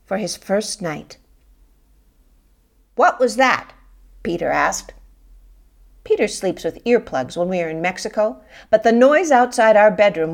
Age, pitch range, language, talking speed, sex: 50-69, 170-255 Hz, English, 140 wpm, female